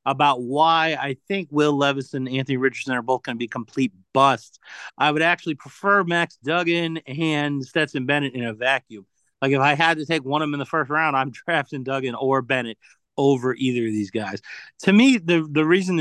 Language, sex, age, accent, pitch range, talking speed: English, male, 30-49, American, 130-185 Hz, 205 wpm